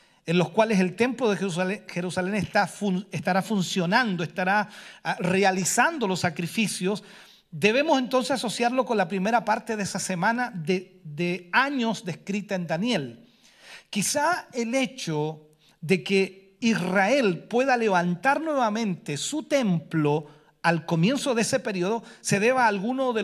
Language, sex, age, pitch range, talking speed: Spanish, male, 40-59, 180-240 Hz, 135 wpm